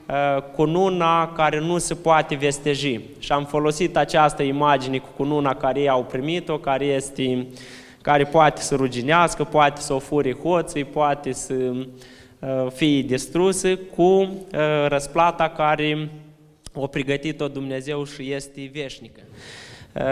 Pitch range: 140-160 Hz